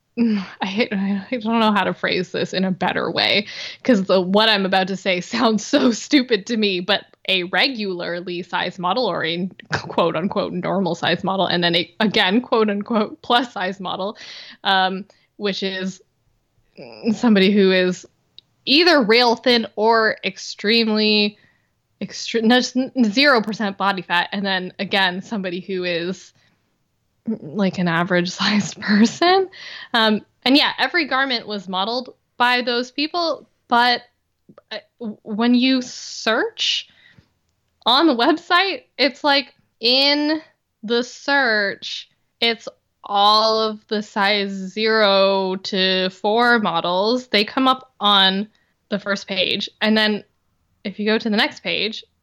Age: 20-39